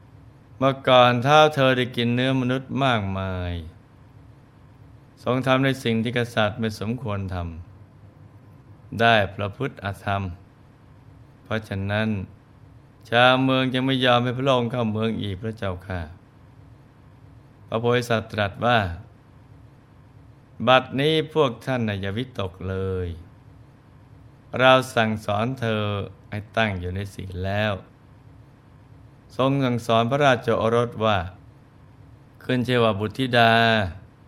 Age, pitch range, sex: 20-39, 105-125 Hz, male